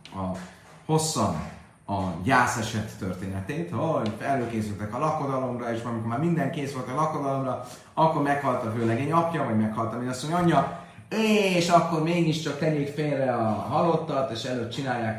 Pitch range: 105-155 Hz